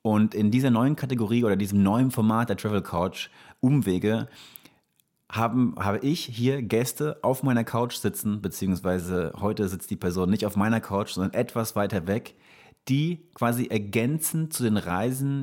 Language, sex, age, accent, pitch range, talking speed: German, male, 30-49, German, 95-115 Hz, 160 wpm